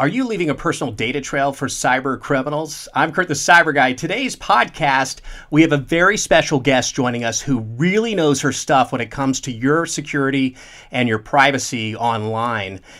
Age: 40-59